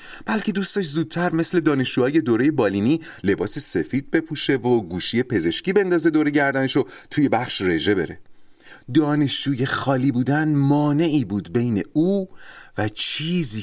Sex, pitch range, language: male, 105-165 Hz, Persian